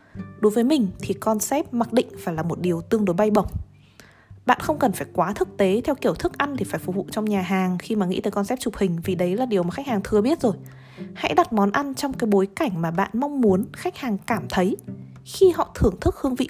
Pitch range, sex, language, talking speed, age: 185-250 Hz, female, Vietnamese, 260 wpm, 20-39